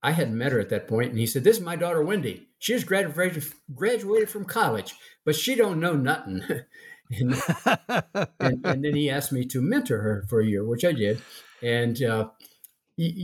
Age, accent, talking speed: 50-69, American, 200 wpm